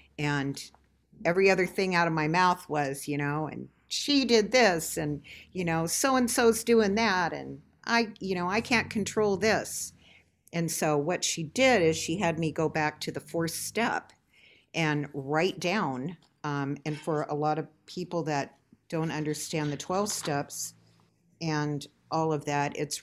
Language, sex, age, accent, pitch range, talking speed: English, female, 50-69, American, 140-170 Hz, 170 wpm